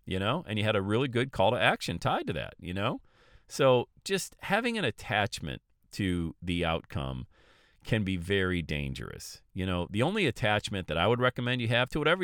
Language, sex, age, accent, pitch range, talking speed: English, male, 40-59, American, 80-110 Hz, 200 wpm